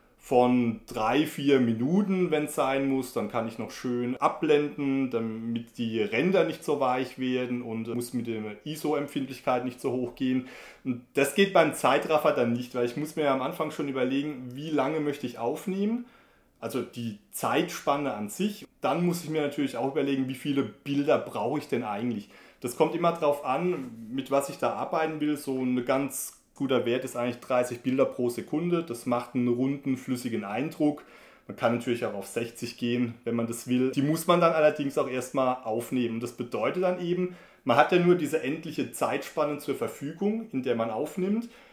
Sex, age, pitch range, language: male, 30-49, 120-155 Hz, German